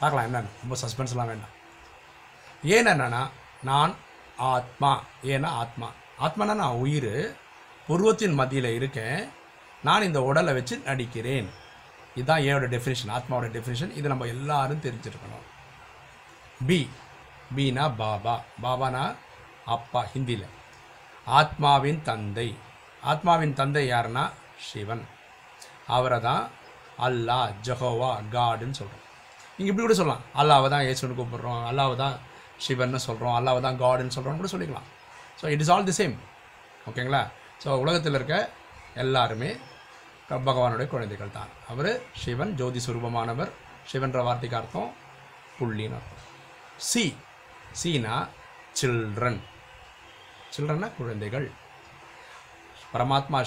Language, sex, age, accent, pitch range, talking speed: Tamil, male, 50-69, native, 120-140 Hz, 105 wpm